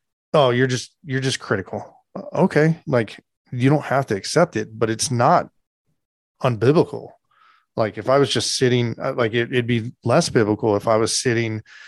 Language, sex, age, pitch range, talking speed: English, male, 20-39, 105-130 Hz, 165 wpm